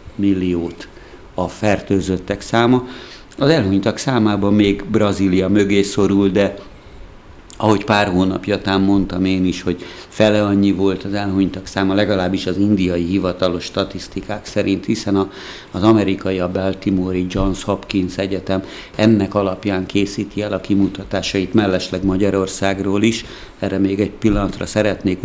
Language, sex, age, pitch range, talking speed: Hungarian, male, 60-79, 95-105 Hz, 130 wpm